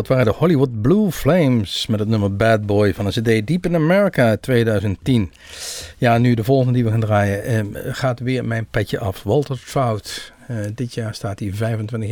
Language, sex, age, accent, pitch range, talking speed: Dutch, male, 50-69, Dutch, 110-130 Hz, 200 wpm